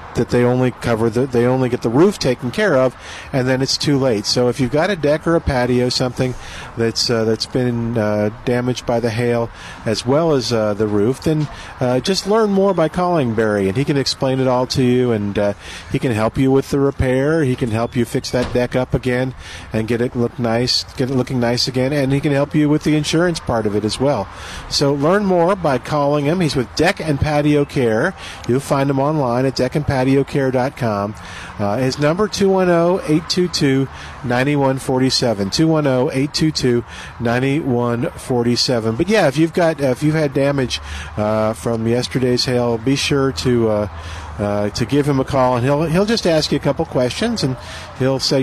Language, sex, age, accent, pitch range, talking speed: English, male, 50-69, American, 120-145 Hz, 200 wpm